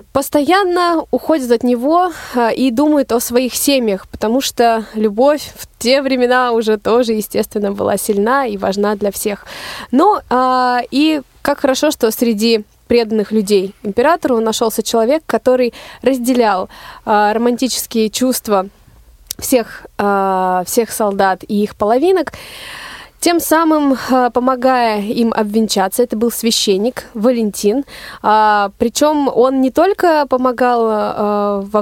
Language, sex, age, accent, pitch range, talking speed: Russian, female, 20-39, native, 210-255 Hz, 115 wpm